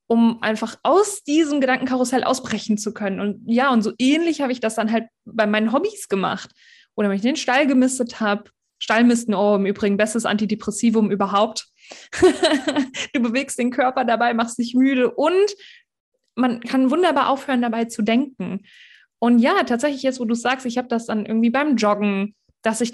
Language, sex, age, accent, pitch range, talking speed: German, female, 20-39, German, 220-265 Hz, 180 wpm